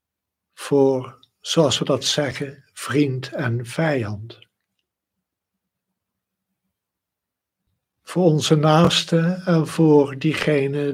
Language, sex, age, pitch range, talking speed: Dutch, male, 60-79, 105-160 Hz, 75 wpm